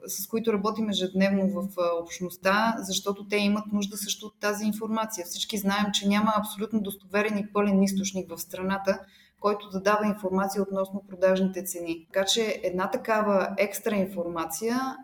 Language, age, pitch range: Bulgarian, 20-39, 195-225 Hz